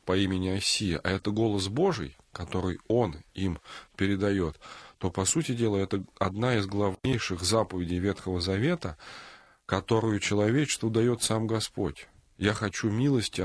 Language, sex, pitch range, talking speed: Russian, male, 90-110 Hz, 135 wpm